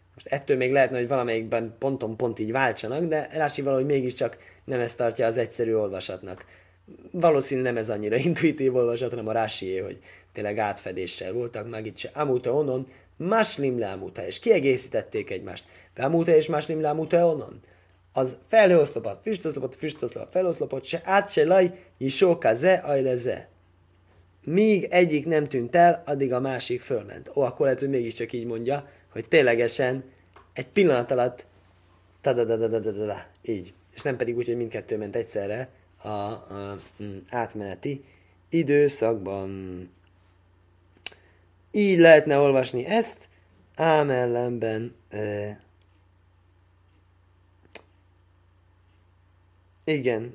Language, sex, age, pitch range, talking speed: Hungarian, male, 20-39, 90-135 Hz, 120 wpm